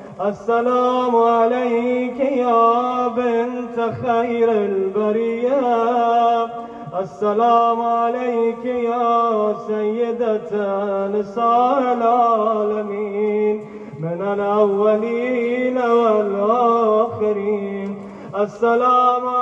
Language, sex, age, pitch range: Urdu, male, 30-49, 225-250 Hz